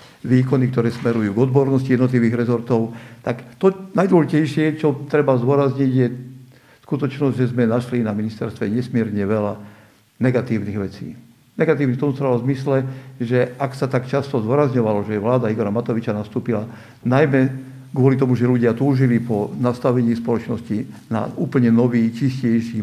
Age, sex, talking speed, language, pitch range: 60-79, male, 140 wpm, Slovak, 110-130 Hz